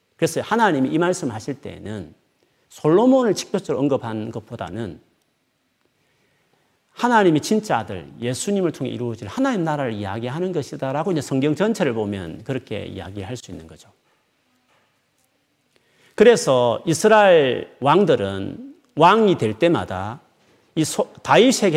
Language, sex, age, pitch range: Korean, male, 40-59, 110-180 Hz